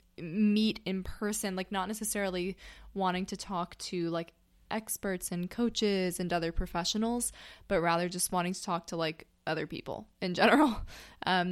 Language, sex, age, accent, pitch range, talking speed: English, female, 20-39, American, 170-205 Hz, 155 wpm